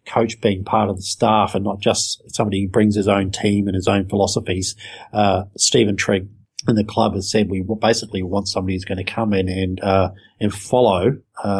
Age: 40-59